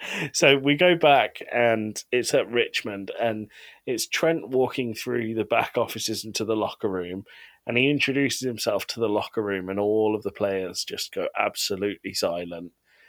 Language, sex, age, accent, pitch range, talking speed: English, male, 30-49, British, 95-125 Hz, 170 wpm